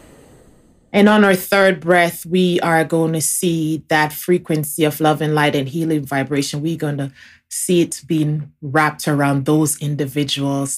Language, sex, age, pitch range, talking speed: English, female, 20-39, 140-185 Hz, 160 wpm